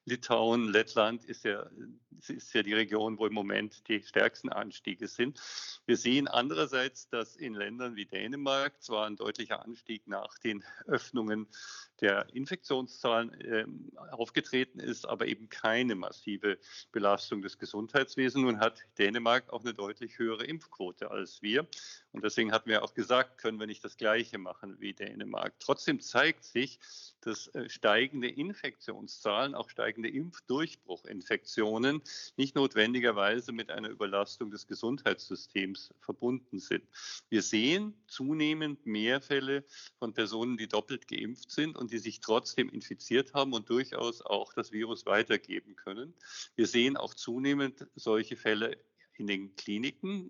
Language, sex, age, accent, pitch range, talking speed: German, male, 50-69, German, 110-135 Hz, 140 wpm